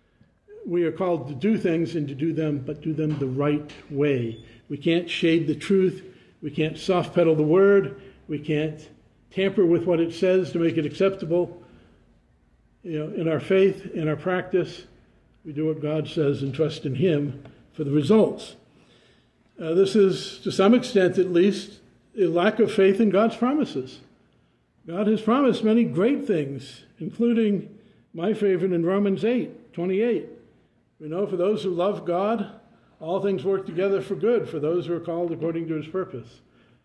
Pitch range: 150-195 Hz